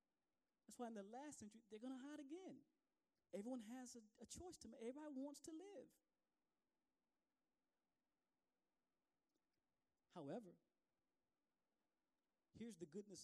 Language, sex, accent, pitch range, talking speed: English, male, American, 225-285 Hz, 110 wpm